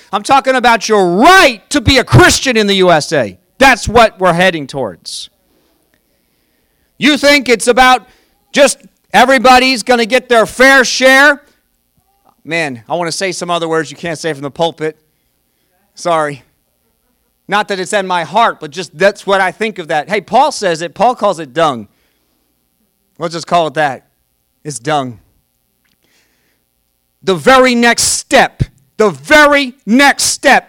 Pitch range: 165-245 Hz